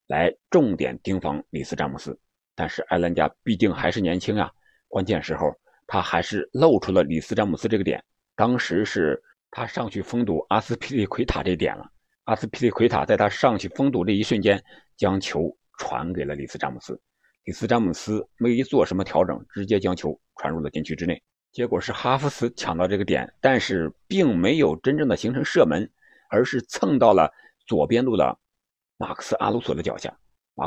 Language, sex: Chinese, male